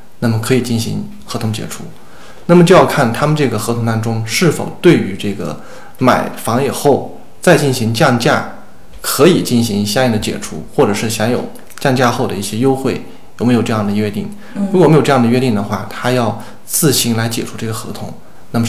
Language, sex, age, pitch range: Chinese, male, 20-39, 110-140 Hz